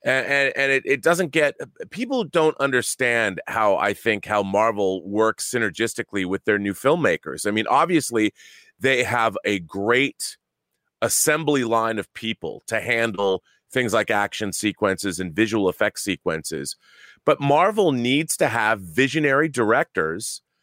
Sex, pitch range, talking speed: male, 105-150 Hz, 140 wpm